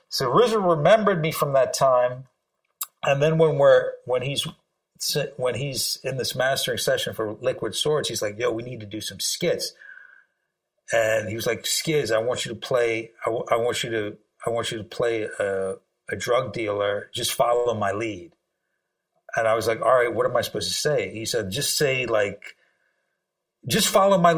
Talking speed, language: 195 wpm, English